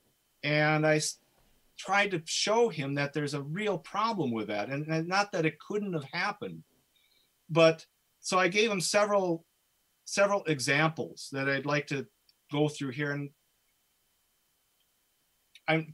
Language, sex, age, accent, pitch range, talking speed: English, male, 50-69, American, 125-160 Hz, 145 wpm